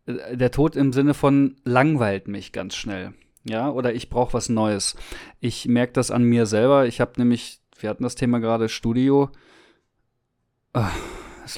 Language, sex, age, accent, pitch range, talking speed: German, male, 20-39, German, 110-125 Hz, 160 wpm